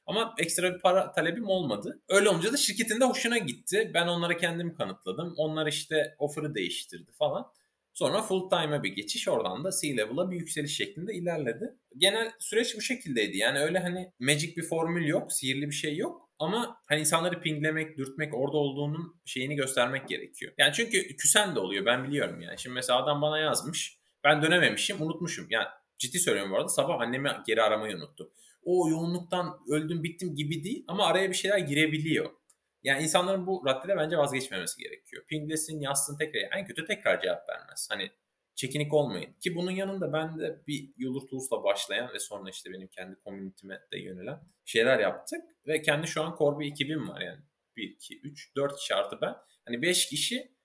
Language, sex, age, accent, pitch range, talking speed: Turkish, male, 30-49, native, 145-185 Hz, 180 wpm